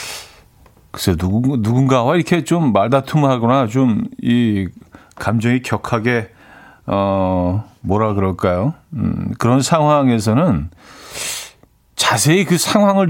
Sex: male